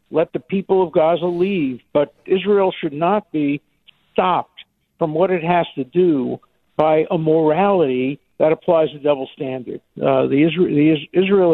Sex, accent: male, American